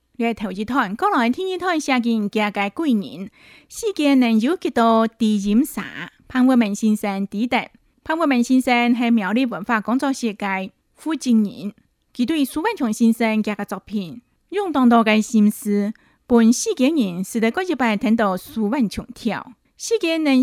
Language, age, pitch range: Chinese, 20-39, 210-265 Hz